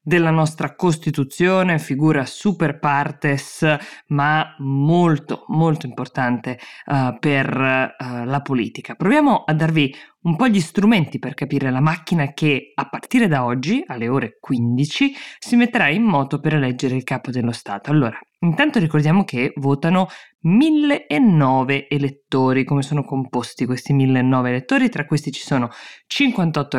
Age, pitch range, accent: 20-39, 130-165 Hz, native